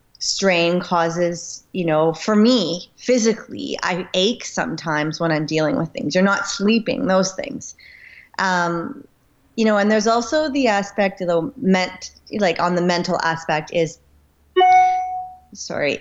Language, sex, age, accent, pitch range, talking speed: English, female, 30-49, American, 170-195 Hz, 140 wpm